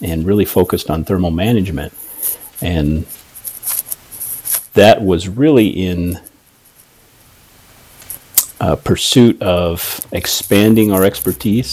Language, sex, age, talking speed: English, male, 50-69, 85 wpm